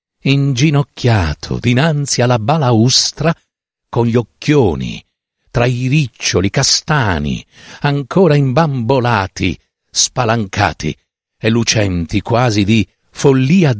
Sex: male